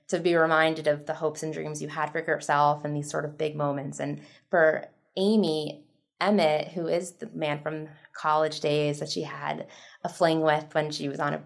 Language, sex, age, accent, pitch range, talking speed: English, female, 20-39, American, 150-180 Hz, 210 wpm